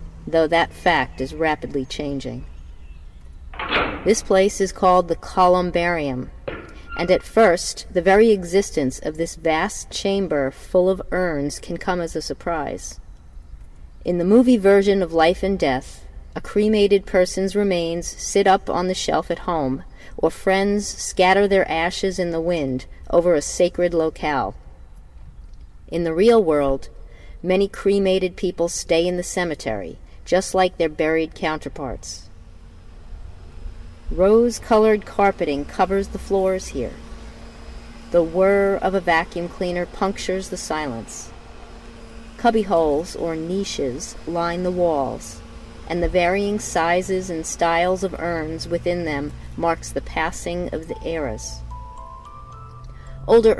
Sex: female